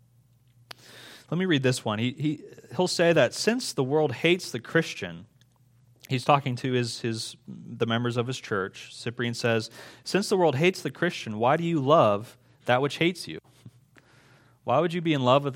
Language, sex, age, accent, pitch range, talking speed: English, male, 30-49, American, 120-140 Hz, 190 wpm